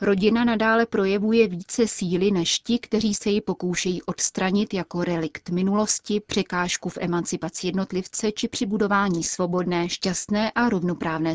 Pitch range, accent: 175-205 Hz, native